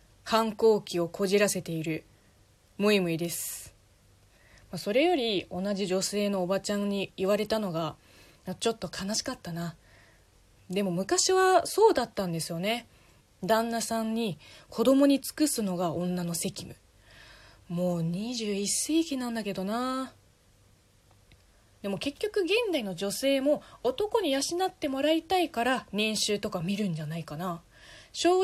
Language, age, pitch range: Japanese, 20-39, 170-285 Hz